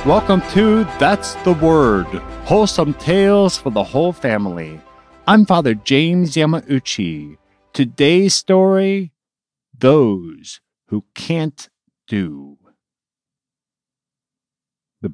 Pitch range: 105-155 Hz